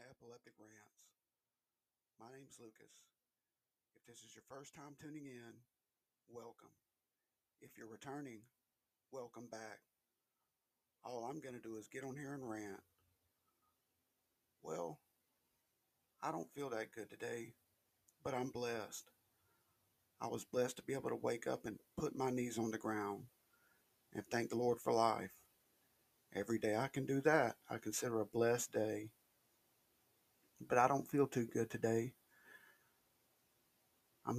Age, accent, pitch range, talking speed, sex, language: 50-69, American, 115-125 Hz, 140 wpm, male, English